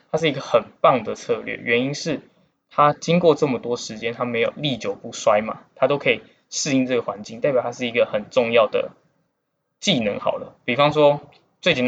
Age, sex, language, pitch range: 20-39, male, Chinese, 120-165 Hz